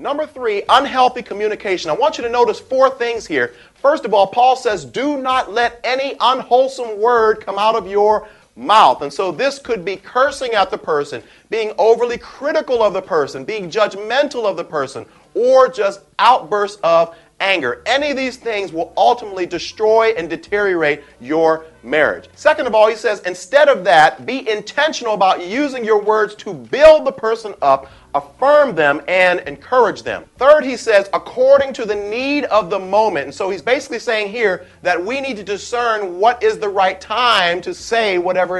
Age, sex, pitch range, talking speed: 40-59, male, 185-255 Hz, 180 wpm